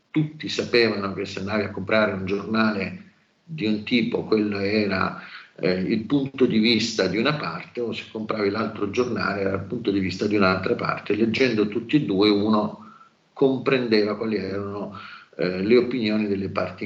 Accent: native